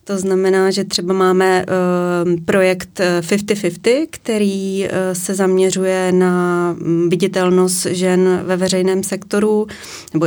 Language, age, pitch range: Czech, 20-39, 180-200 Hz